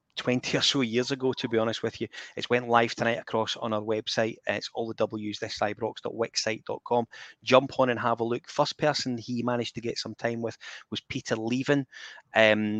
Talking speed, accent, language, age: 200 wpm, British, English, 20-39